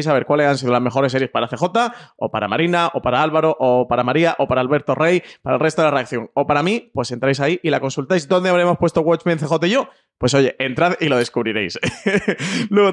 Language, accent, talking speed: Spanish, Spanish, 240 wpm